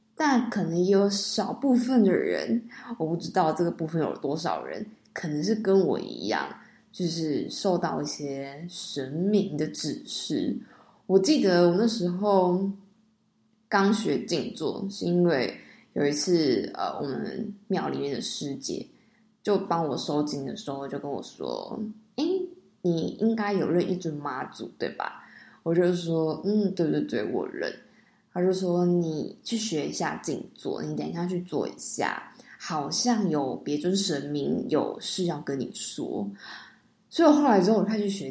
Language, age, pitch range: Chinese, 20-39, 170-215 Hz